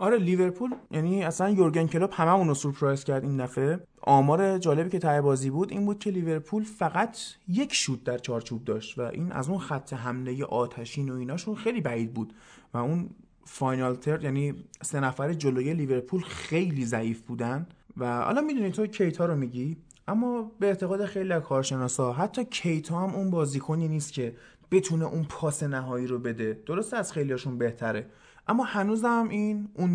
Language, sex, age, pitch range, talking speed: Persian, male, 20-39, 130-195 Hz, 170 wpm